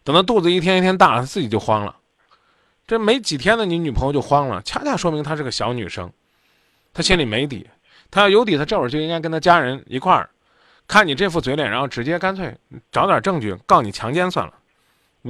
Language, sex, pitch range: Chinese, male, 120-180 Hz